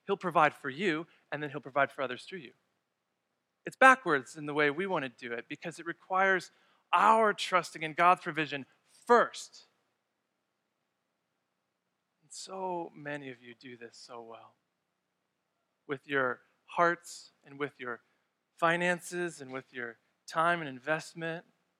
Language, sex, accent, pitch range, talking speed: English, male, American, 130-175 Hz, 145 wpm